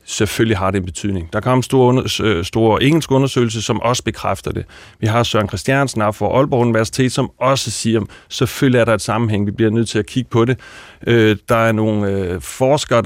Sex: male